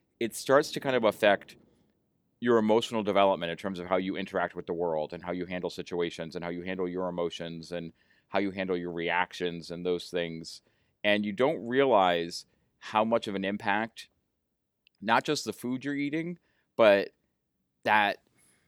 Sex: male